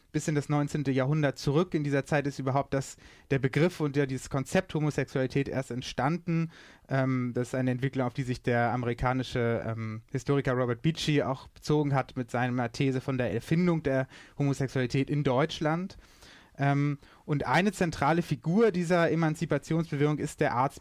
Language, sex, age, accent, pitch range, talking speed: German, male, 30-49, German, 130-155 Hz, 165 wpm